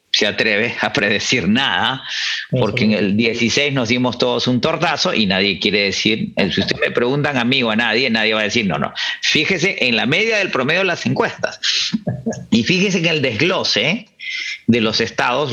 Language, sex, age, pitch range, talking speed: English, male, 50-69, 115-185 Hz, 185 wpm